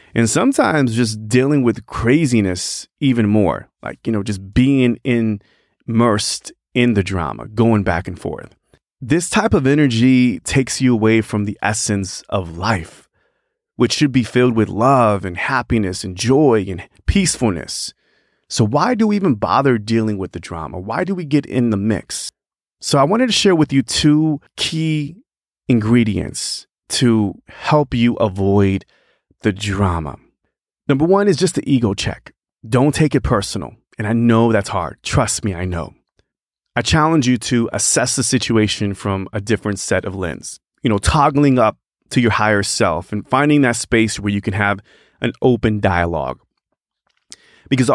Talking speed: 165 wpm